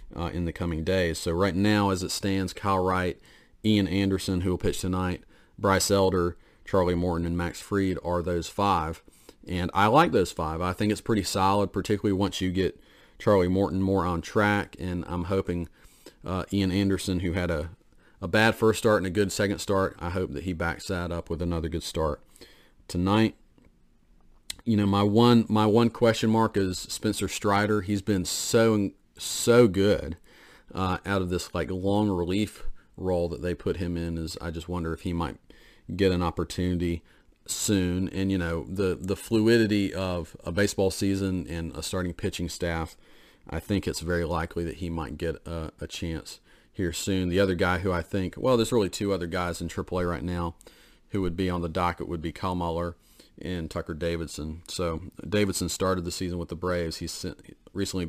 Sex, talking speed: male, 195 wpm